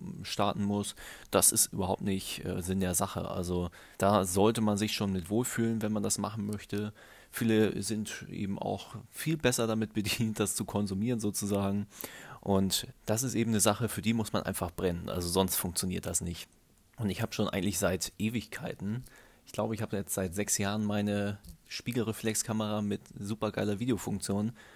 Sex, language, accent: male, German, German